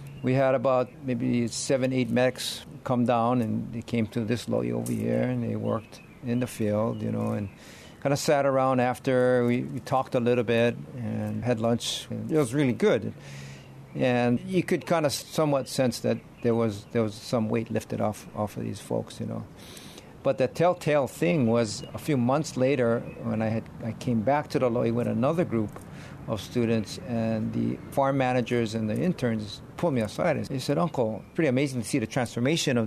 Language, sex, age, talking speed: English, male, 50-69, 205 wpm